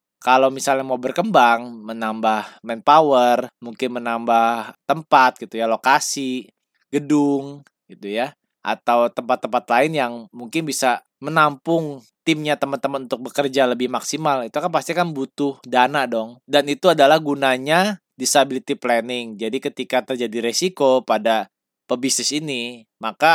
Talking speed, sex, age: 125 wpm, male, 20-39